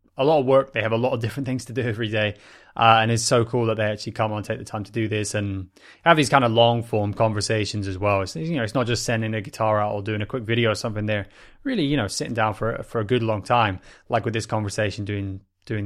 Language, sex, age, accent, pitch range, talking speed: English, male, 20-39, British, 100-115 Hz, 290 wpm